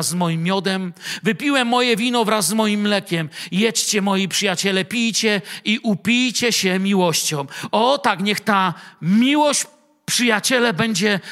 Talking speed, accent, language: 135 wpm, native, Polish